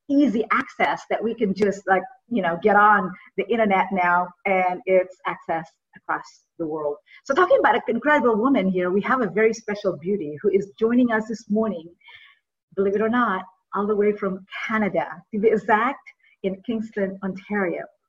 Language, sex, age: English, female, 50-69